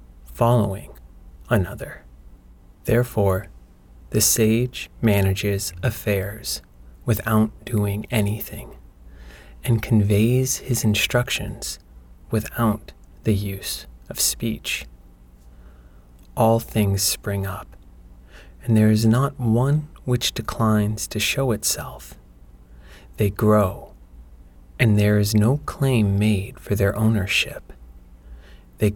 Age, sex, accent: 30-49, male, American